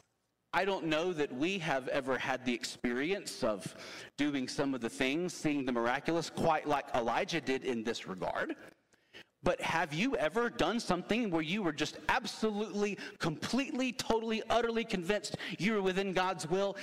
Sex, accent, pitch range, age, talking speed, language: male, American, 135-200 Hz, 40-59, 165 wpm, English